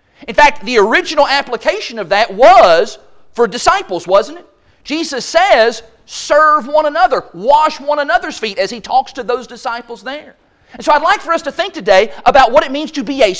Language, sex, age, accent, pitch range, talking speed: English, male, 40-59, American, 225-300 Hz, 195 wpm